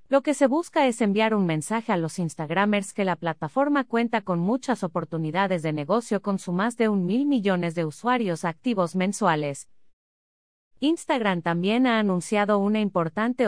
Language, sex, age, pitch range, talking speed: Spanish, female, 30-49, 170-235 Hz, 165 wpm